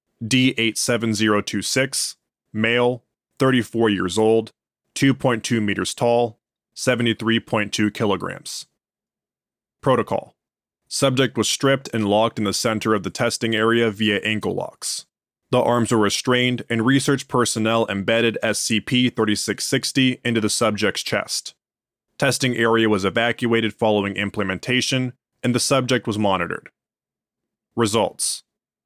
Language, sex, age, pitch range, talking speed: English, male, 20-39, 105-125 Hz, 105 wpm